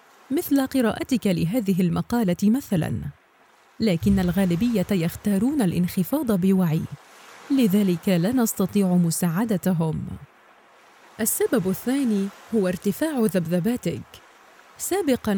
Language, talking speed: Arabic, 80 wpm